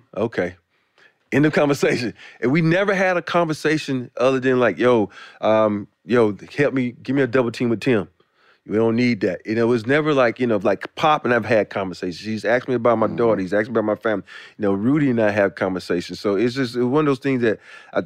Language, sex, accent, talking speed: English, male, American, 235 wpm